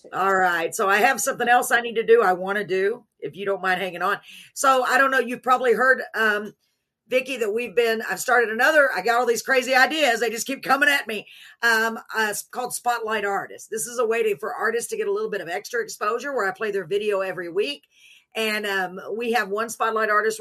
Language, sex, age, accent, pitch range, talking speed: English, female, 50-69, American, 195-245 Hz, 245 wpm